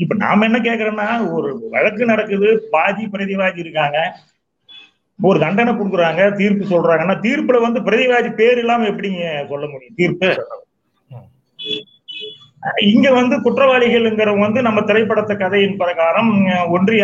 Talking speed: 70 wpm